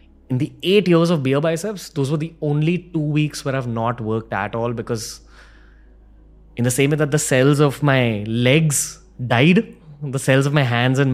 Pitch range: 90-135 Hz